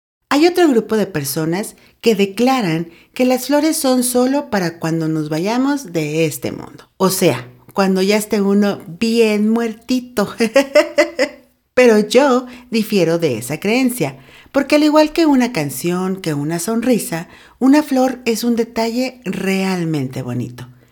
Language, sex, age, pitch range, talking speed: Spanish, female, 50-69, 170-255 Hz, 140 wpm